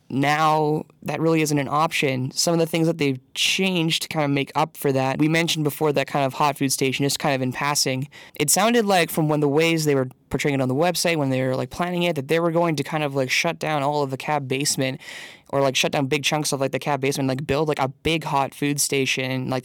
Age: 20-39